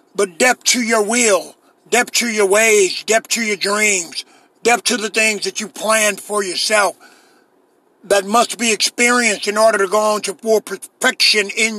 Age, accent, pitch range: 50-69, American, 195-240 Hz